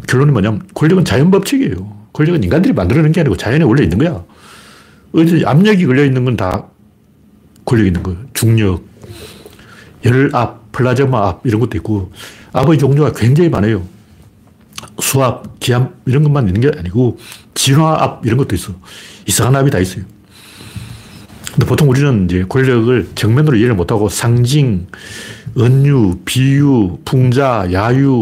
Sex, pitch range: male, 105-145 Hz